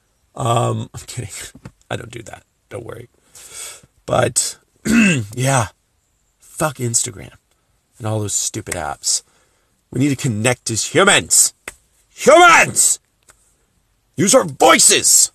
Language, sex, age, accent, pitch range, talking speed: English, male, 40-59, American, 105-130 Hz, 110 wpm